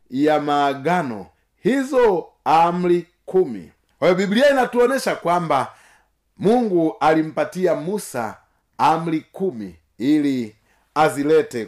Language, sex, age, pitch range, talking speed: Swahili, male, 40-59, 160-245 Hz, 80 wpm